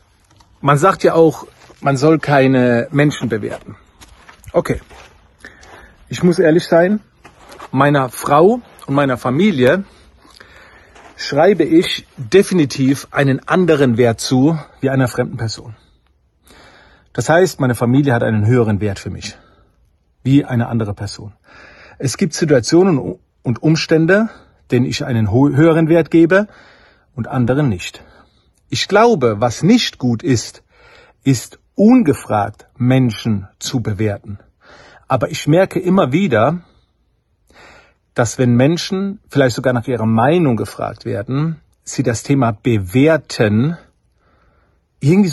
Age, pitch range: 40-59, 115-165 Hz